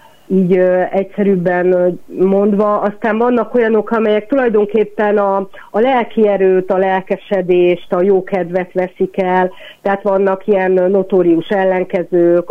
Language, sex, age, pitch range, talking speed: Hungarian, female, 40-59, 175-200 Hz, 120 wpm